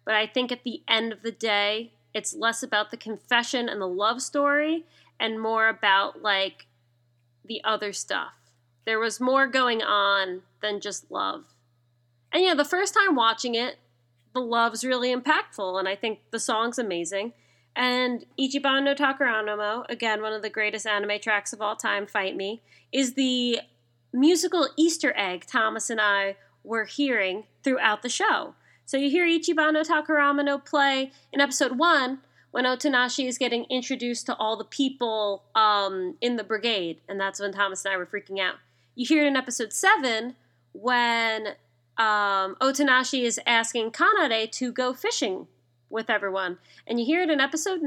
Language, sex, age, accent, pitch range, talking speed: English, female, 20-39, American, 200-255 Hz, 165 wpm